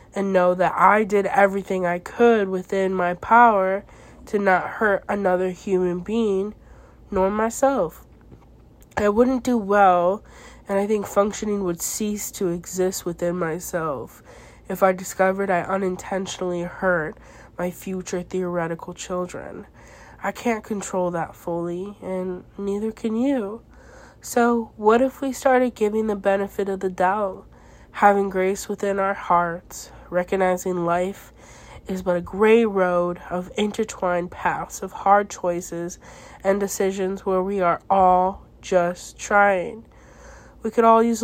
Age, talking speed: 20-39, 135 wpm